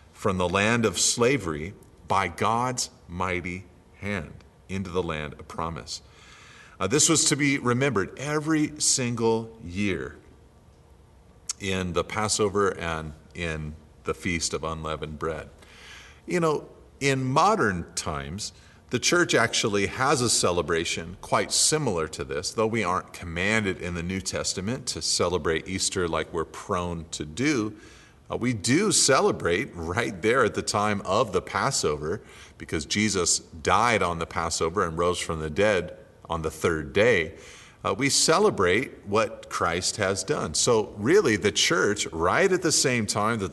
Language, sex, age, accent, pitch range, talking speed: English, male, 40-59, American, 80-110 Hz, 150 wpm